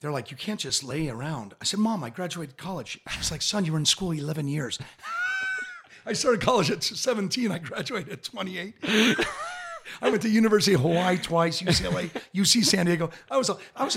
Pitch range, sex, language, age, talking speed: 125-180 Hz, male, English, 40-59, 195 wpm